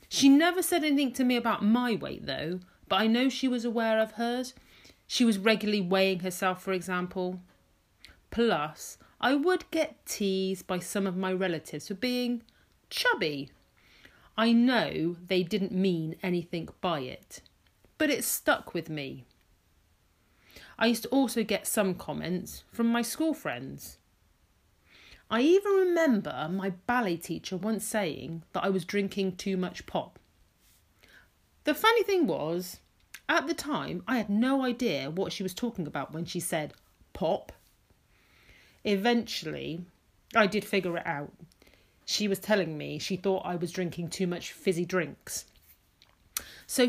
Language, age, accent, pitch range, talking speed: English, 40-59, British, 175-245 Hz, 150 wpm